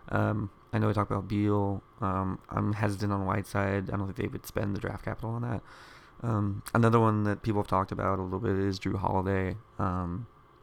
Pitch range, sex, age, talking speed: 100-115 Hz, male, 20-39, 220 wpm